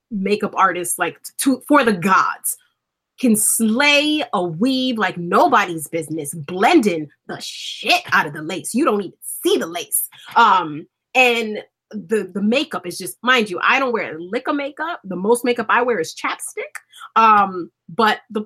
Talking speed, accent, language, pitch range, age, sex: 170 wpm, American, English, 195-250 Hz, 30-49, female